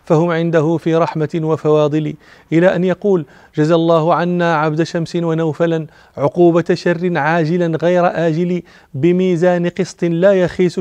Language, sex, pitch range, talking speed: Arabic, male, 165-180 Hz, 130 wpm